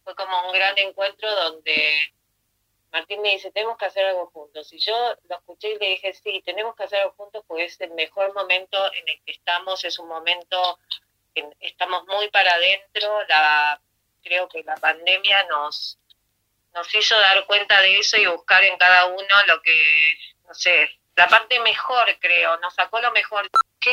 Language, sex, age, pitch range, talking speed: Spanish, female, 30-49, 160-205 Hz, 185 wpm